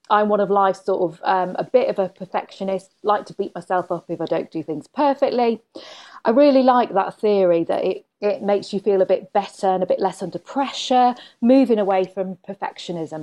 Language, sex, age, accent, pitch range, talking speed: English, female, 40-59, British, 185-240 Hz, 215 wpm